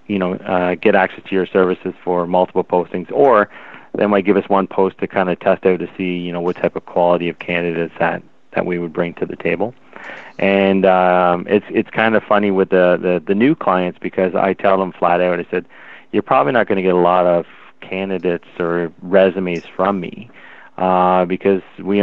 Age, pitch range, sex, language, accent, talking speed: 30-49, 90-95 Hz, male, English, American, 215 wpm